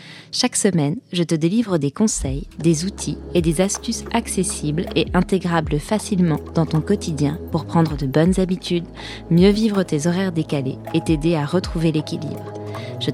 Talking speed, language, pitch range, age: 160 wpm, French, 160-195 Hz, 20-39